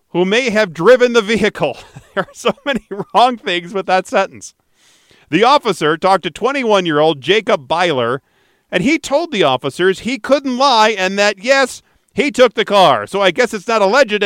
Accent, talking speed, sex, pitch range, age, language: American, 180 wpm, male, 155-215 Hz, 40-59, English